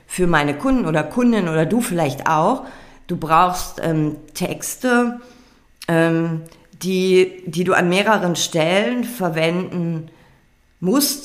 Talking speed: 115 wpm